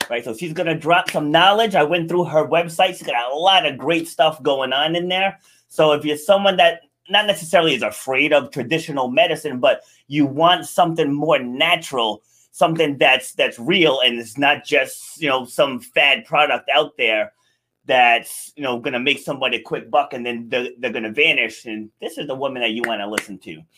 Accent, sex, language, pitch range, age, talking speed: American, male, English, 140-195 Hz, 30-49, 215 wpm